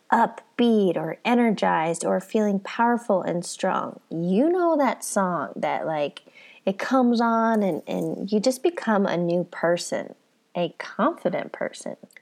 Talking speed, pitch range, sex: 135 wpm, 195-265 Hz, female